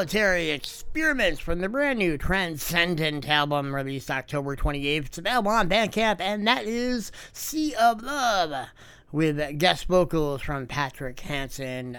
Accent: American